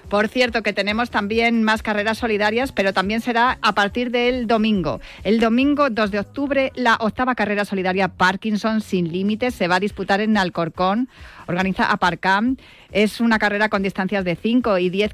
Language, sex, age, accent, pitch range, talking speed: Spanish, female, 40-59, Spanish, 185-225 Hz, 175 wpm